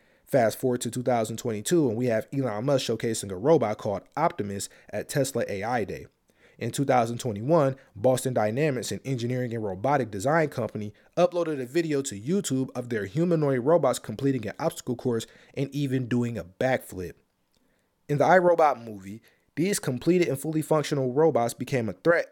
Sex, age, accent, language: male, 20-39, American, English